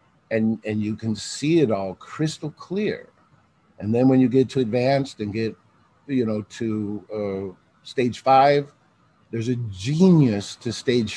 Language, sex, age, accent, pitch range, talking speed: English, male, 50-69, American, 110-140 Hz, 155 wpm